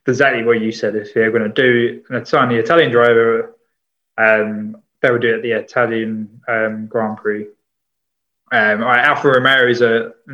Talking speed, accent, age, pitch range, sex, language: 180 wpm, British, 20-39, 115-150 Hz, male, English